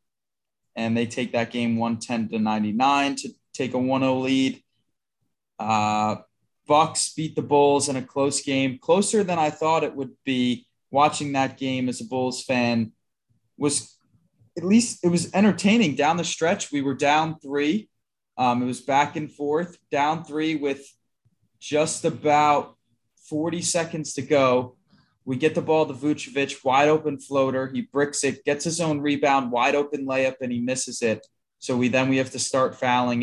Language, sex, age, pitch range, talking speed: English, male, 20-39, 120-150 Hz, 170 wpm